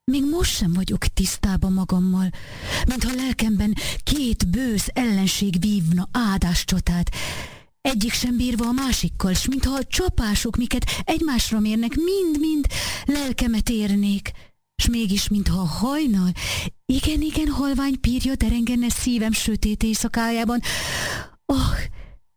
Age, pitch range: 30-49, 195-275 Hz